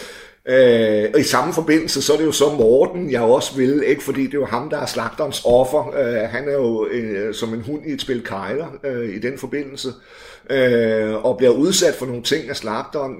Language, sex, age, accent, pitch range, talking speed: Danish, male, 60-79, native, 115-165 Hz, 225 wpm